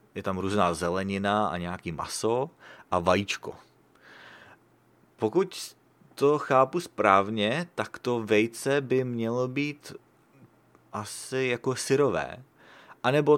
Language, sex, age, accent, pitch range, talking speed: English, male, 30-49, Czech, 100-125 Hz, 105 wpm